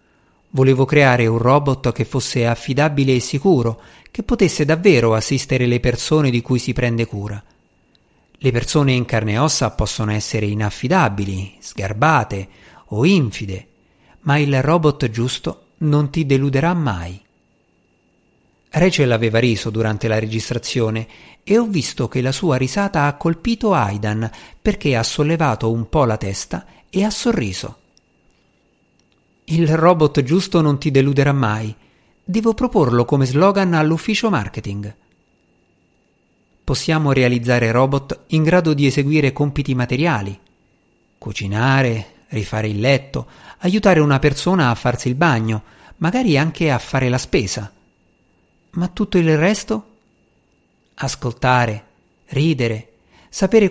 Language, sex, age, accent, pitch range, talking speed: Italian, male, 50-69, native, 110-160 Hz, 125 wpm